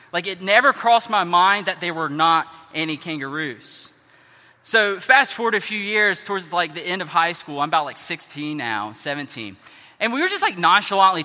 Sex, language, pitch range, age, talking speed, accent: male, English, 155-225 Hz, 20-39, 195 wpm, American